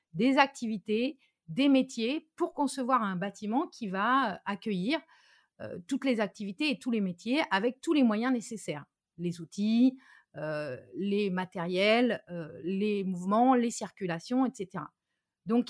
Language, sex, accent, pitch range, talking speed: French, female, French, 200-270 Hz, 140 wpm